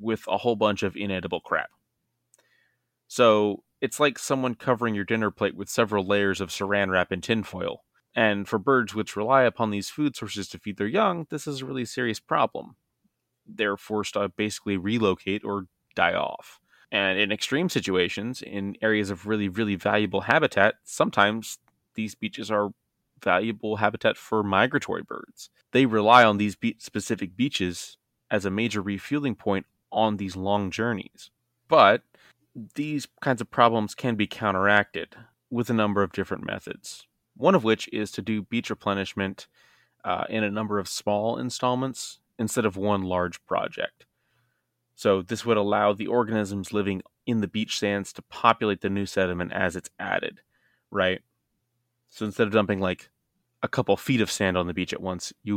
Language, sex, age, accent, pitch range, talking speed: English, male, 20-39, American, 95-115 Hz, 165 wpm